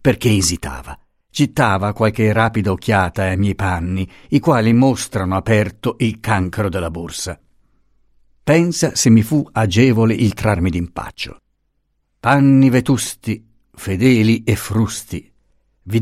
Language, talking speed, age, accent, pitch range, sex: Italian, 115 wpm, 50-69, native, 95-135 Hz, male